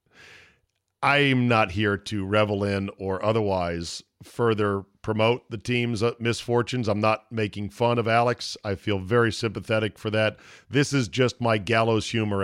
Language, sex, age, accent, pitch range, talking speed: English, male, 40-59, American, 100-125 Hz, 150 wpm